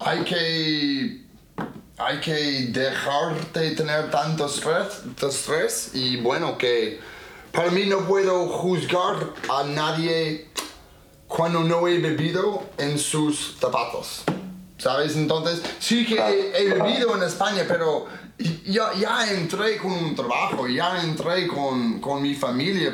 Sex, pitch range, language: male, 145-200 Hz, English